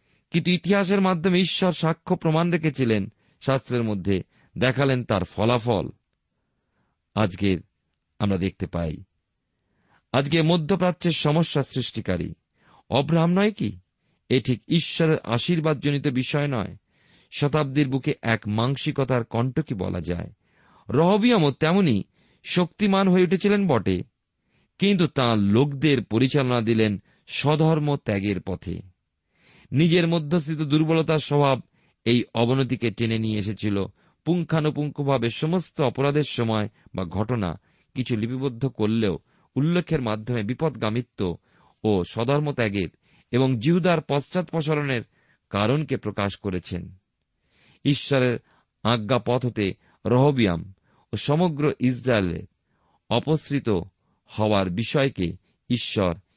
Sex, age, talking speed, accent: male, 50-69, 85 wpm, native